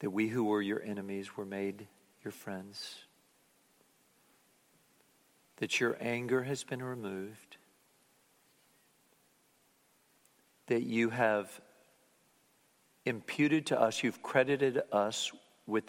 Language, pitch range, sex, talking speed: English, 105-120 Hz, male, 100 wpm